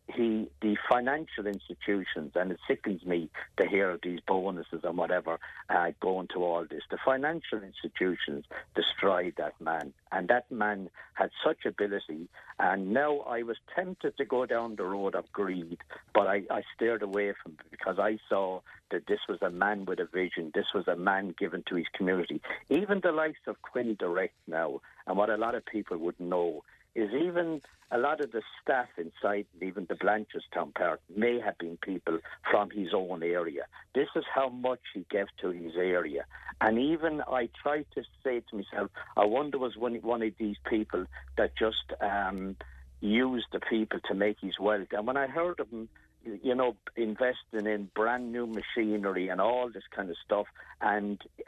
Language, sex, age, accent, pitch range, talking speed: English, male, 60-79, British, 95-125 Hz, 185 wpm